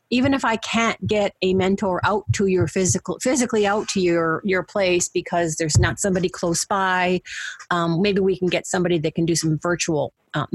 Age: 40-59